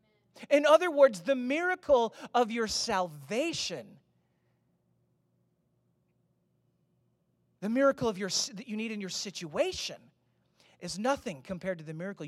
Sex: male